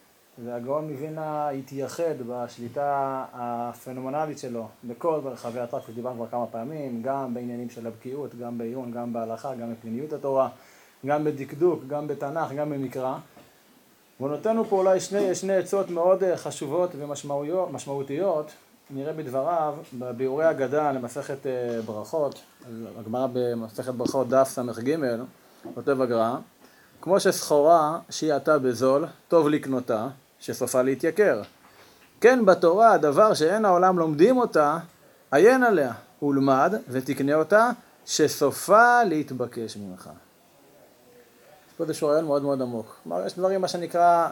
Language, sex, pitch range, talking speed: Hebrew, male, 125-165 Hz, 120 wpm